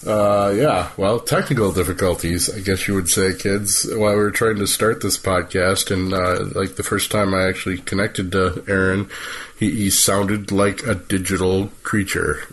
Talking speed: 175 wpm